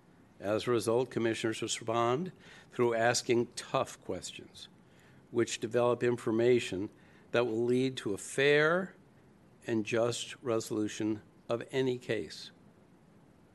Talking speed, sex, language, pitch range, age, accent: 105 wpm, male, English, 115-135 Hz, 60-79, American